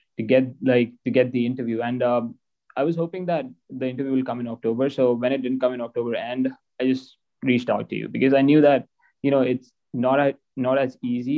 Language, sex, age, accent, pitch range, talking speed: English, male, 20-39, Indian, 120-140 Hz, 235 wpm